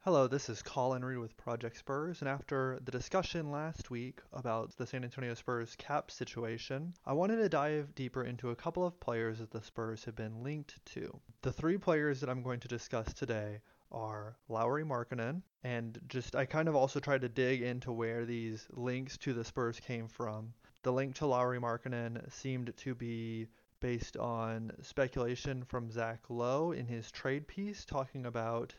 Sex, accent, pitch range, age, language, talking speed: male, American, 115-135 Hz, 30-49, English, 185 wpm